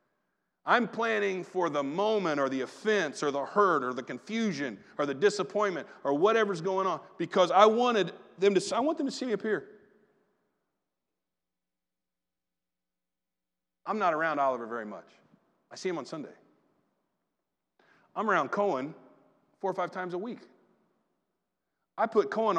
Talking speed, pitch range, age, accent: 150 wpm, 165-225 Hz, 40-59, American